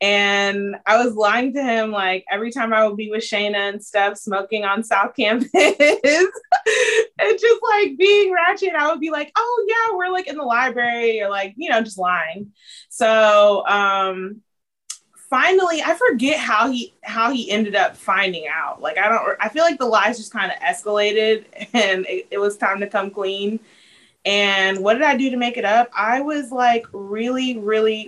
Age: 20-39